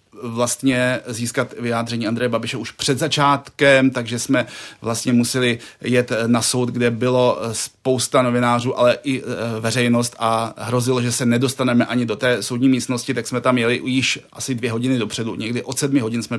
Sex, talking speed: male, 170 wpm